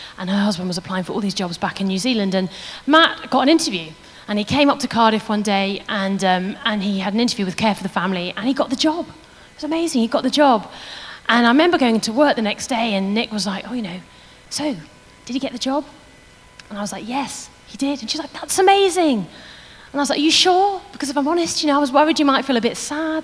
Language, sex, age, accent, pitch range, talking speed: English, female, 30-49, British, 200-285 Hz, 275 wpm